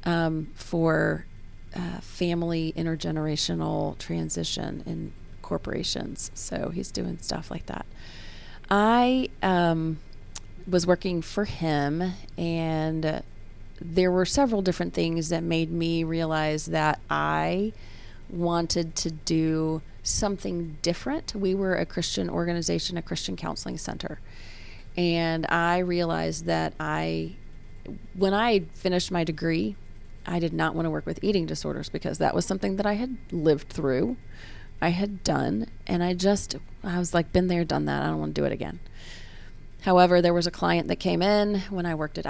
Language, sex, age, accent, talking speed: English, female, 30-49, American, 150 wpm